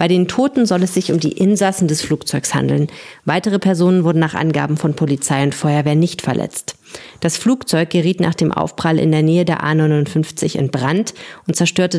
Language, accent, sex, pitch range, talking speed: German, German, female, 150-185 Hz, 190 wpm